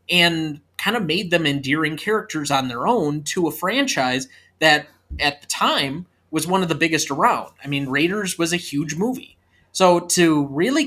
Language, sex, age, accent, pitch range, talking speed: English, male, 20-39, American, 135-185 Hz, 180 wpm